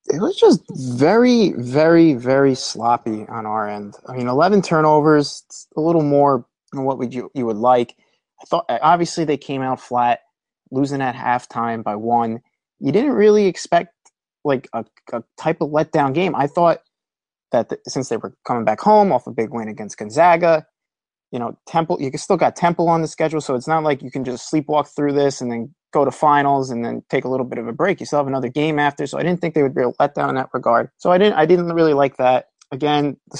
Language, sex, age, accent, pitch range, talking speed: English, male, 20-39, American, 125-160 Hz, 220 wpm